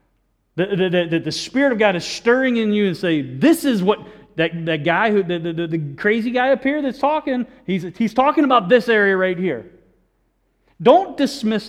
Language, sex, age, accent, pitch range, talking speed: English, male, 40-59, American, 160-240 Hz, 200 wpm